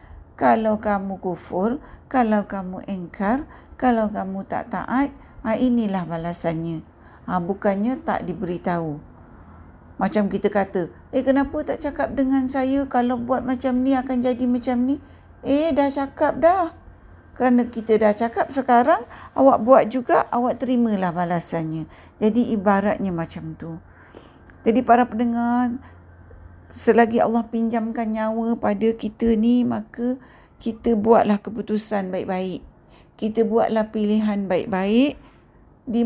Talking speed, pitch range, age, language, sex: 120 wpm, 195-245 Hz, 50-69, Malay, female